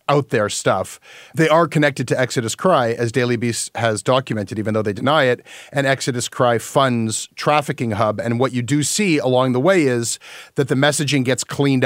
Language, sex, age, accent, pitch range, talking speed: English, male, 40-59, American, 115-140 Hz, 195 wpm